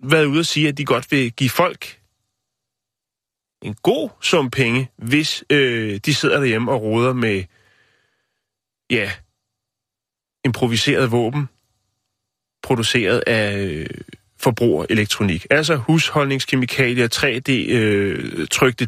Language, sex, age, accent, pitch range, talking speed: Danish, male, 30-49, native, 110-145 Hz, 100 wpm